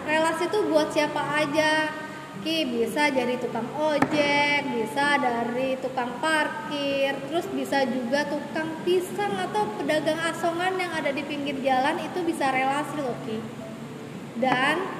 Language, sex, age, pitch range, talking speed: Indonesian, female, 20-39, 255-325 Hz, 130 wpm